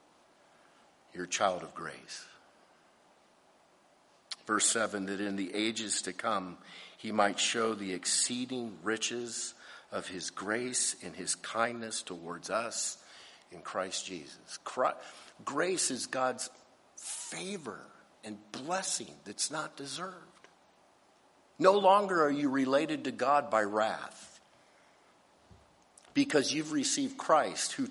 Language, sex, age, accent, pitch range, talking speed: English, male, 50-69, American, 110-140 Hz, 115 wpm